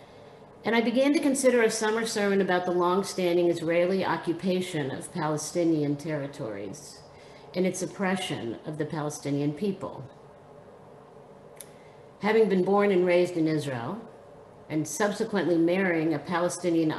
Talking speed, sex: 125 wpm, female